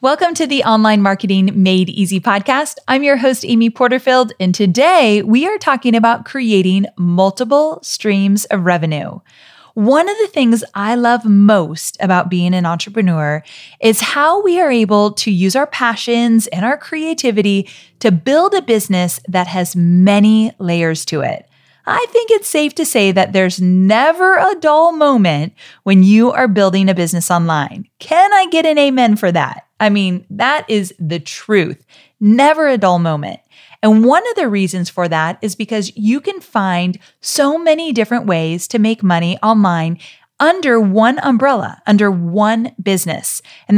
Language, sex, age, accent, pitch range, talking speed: English, female, 30-49, American, 185-255 Hz, 165 wpm